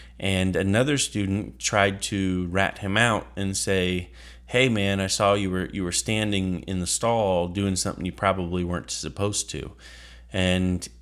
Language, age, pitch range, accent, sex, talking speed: English, 30-49, 85-105 Hz, American, male, 165 wpm